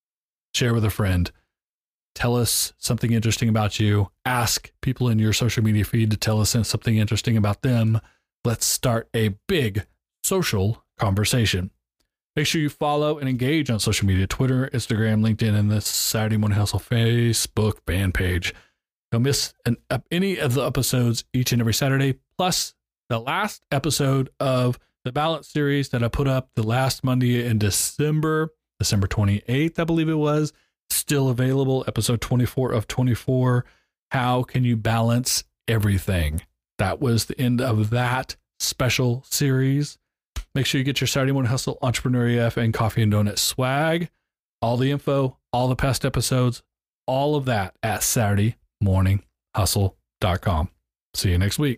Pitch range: 105-130 Hz